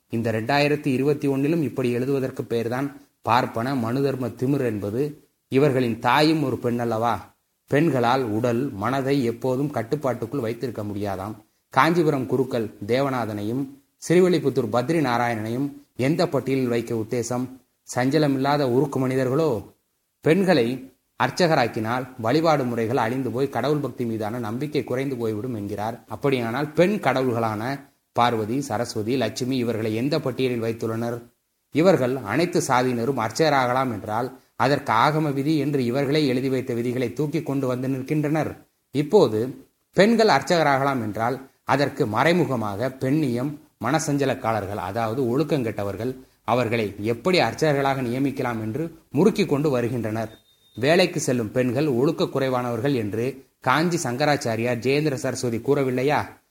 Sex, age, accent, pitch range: male, 30-49, native, 115-140 Hz